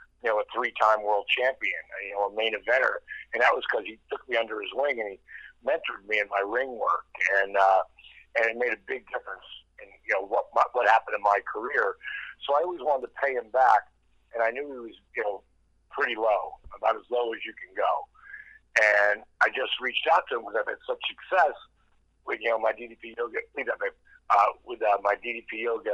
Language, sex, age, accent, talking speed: English, male, 60-79, American, 220 wpm